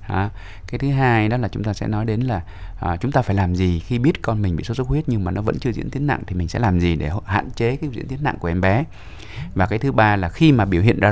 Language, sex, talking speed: Vietnamese, male, 325 wpm